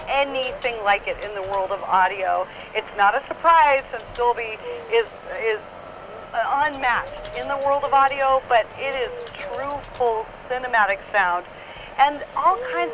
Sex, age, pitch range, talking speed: female, 30-49, 225-275 Hz, 150 wpm